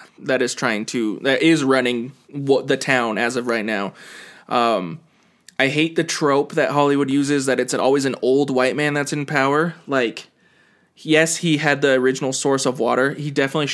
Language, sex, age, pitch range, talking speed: English, male, 20-39, 125-145 Hz, 185 wpm